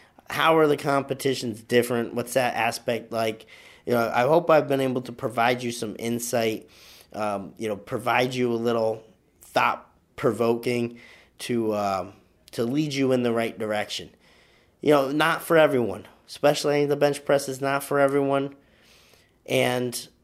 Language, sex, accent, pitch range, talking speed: English, male, American, 110-135 Hz, 155 wpm